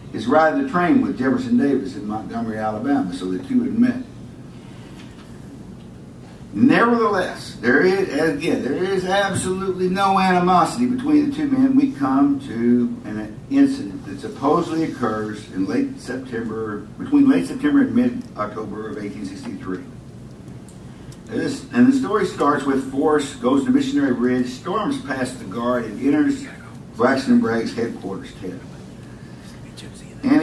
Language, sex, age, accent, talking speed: English, male, 60-79, American, 140 wpm